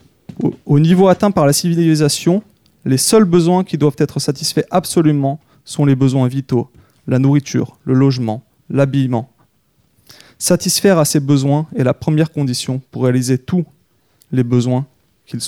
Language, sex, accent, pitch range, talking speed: French, male, French, 130-155 Hz, 145 wpm